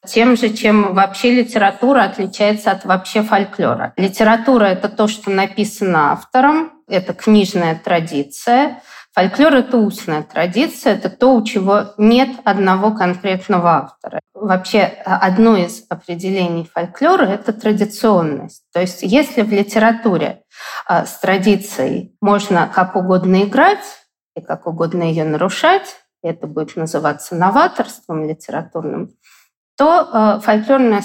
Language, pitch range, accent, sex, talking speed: Russian, 185-240 Hz, native, female, 115 wpm